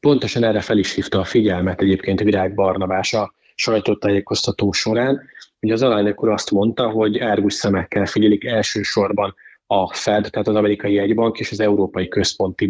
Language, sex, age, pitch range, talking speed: Hungarian, male, 20-39, 100-115 Hz, 160 wpm